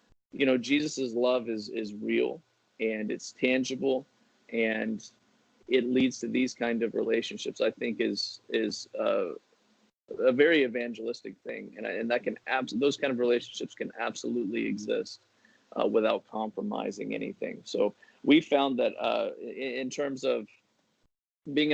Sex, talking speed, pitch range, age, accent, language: male, 145 wpm, 110-135 Hz, 30-49, American, English